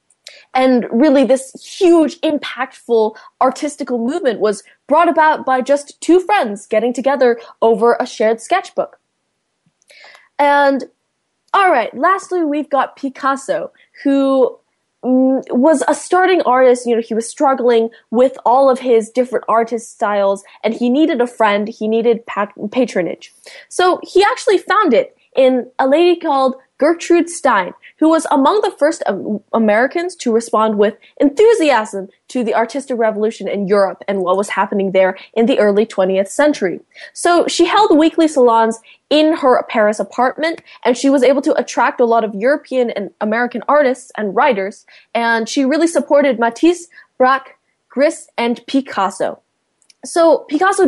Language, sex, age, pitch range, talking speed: English, female, 10-29, 225-300 Hz, 150 wpm